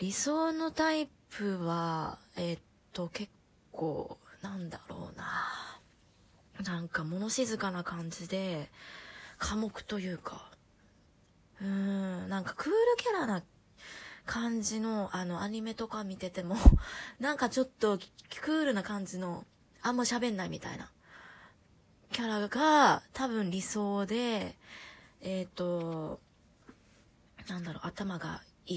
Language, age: Japanese, 20-39